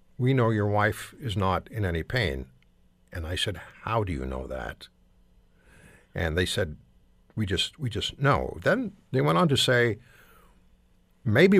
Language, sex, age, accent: English, male, 60-79, American